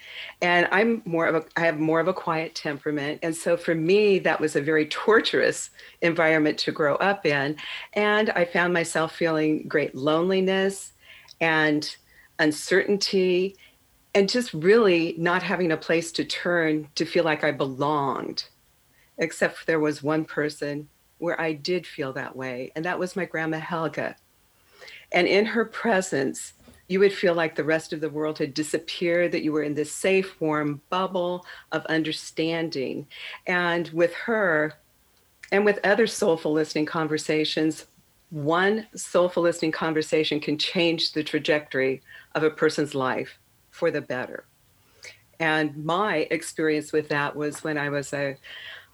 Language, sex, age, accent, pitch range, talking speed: English, female, 50-69, American, 155-175 Hz, 155 wpm